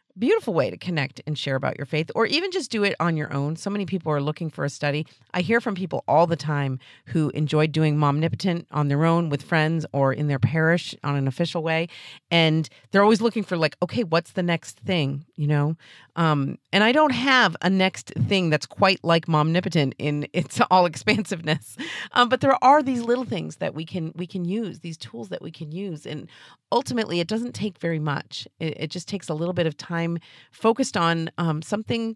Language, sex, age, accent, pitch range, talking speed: English, female, 40-59, American, 150-185 Hz, 220 wpm